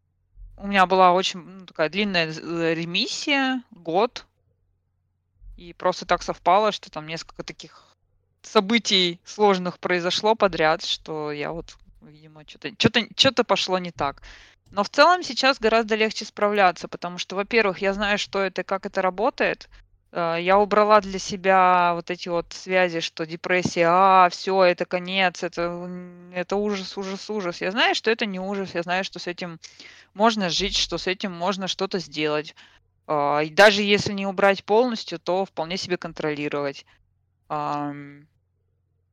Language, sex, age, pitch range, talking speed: Russian, female, 20-39, 150-195 Hz, 145 wpm